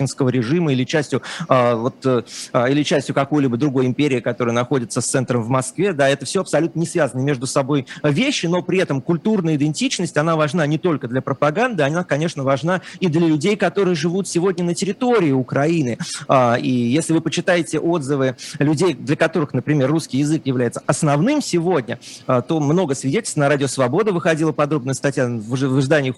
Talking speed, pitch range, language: 175 wpm, 135-170 Hz, Russian